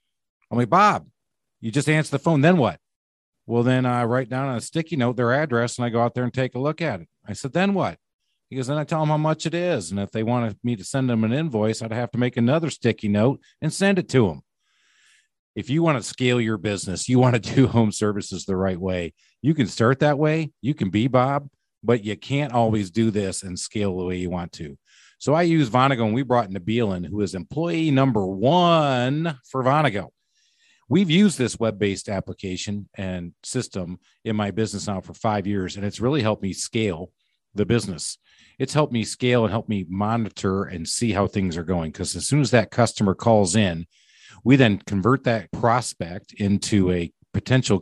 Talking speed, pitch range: 215 wpm, 100-135 Hz